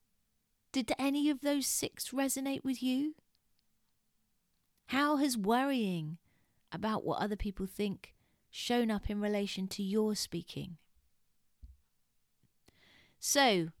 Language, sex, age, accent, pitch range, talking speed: English, female, 30-49, British, 190-260 Hz, 105 wpm